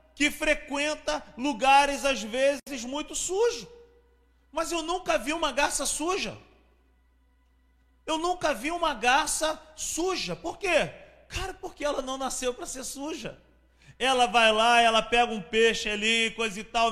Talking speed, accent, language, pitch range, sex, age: 145 wpm, Brazilian, Portuguese, 205-290 Hz, male, 40-59